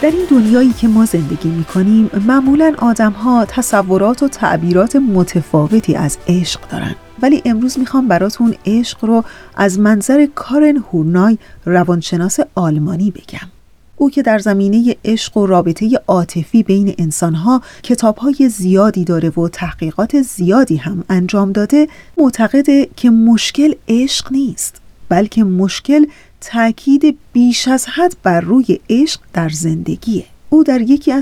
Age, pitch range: 30-49, 185-255 Hz